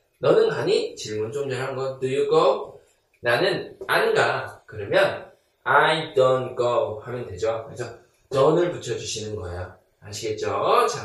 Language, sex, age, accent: Korean, male, 20-39, native